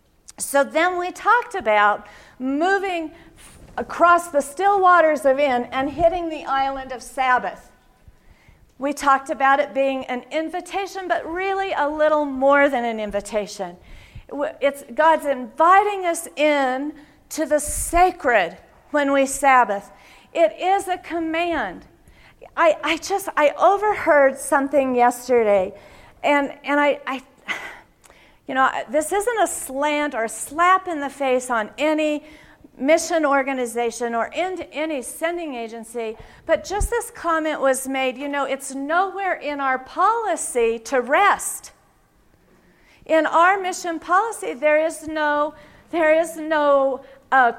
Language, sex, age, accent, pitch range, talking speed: English, female, 50-69, American, 270-345 Hz, 130 wpm